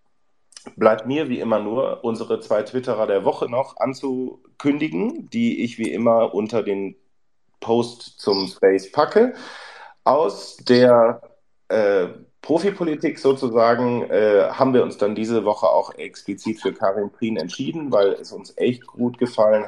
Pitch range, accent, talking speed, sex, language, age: 110-155 Hz, German, 140 wpm, male, German, 40-59